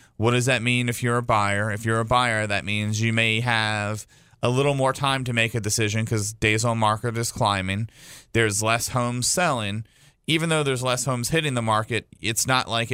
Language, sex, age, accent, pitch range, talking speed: English, male, 30-49, American, 105-130 Hz, 215 wpm